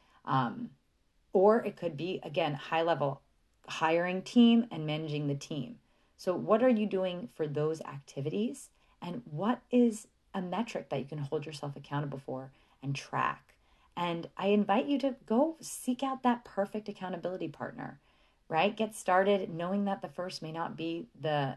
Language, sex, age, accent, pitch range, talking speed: English, female, 30-49, American, 145-205 Hz, 160 wpm